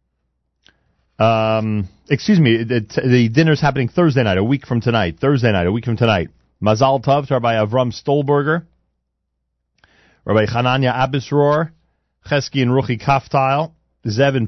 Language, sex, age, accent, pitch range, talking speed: English, male, 40-59, American, 95-125 Hz, 140 wpm